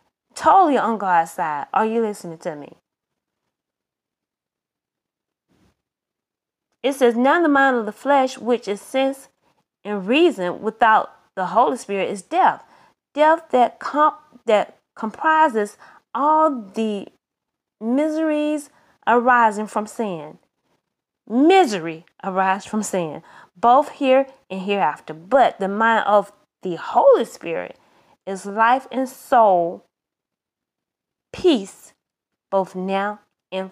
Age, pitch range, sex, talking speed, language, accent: 20-39, 195-265 Hz, female, 110 wpm, English, American